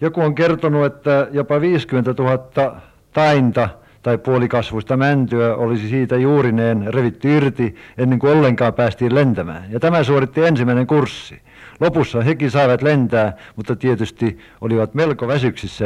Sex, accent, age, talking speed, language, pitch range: male, native, 50-69, 130 wpm, Finnish, 120-160 Hz